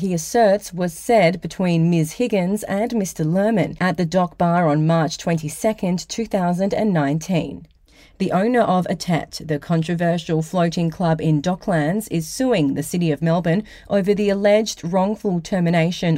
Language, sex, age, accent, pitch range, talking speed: English, female, 30-49, Australian, 160-205 Hz, 145 wpm